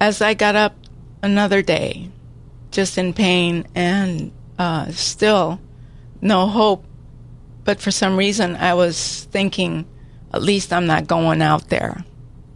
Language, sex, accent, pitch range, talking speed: English, female, American, 130-180 Hz, 135 wpm